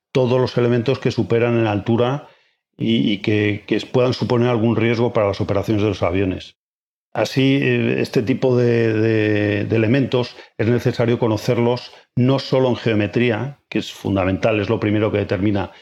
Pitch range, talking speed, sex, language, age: 105-125 Hz, 155 wpm, male, English, 40-59